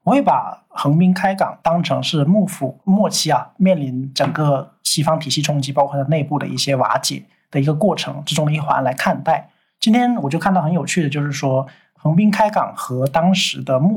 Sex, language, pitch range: male, Chinese, 140-175 Hz